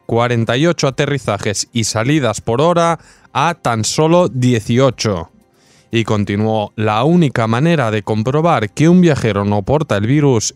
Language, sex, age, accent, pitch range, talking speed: Spanish, male, 20-39, Spanish, 105-140 Hz, 135 wpm